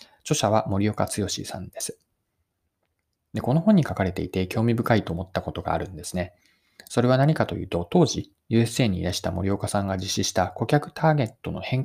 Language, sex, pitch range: Japanese, male, 95-145 Hz